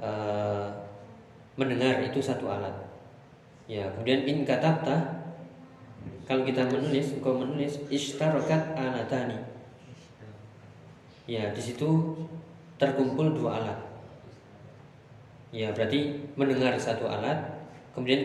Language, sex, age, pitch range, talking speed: Indonesian, male, 20-39, 110-135 Hz, 80 wpm